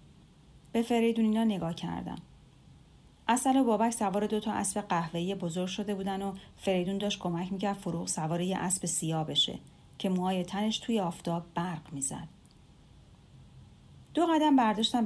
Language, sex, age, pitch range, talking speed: Persian, female, 40-59, 165-235 Hz, 140 wpm